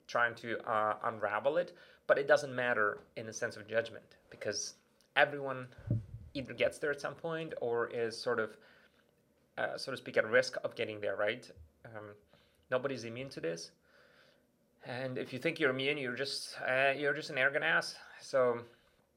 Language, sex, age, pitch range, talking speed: English, male, 30-49, 115-150 Hz, 180 wpm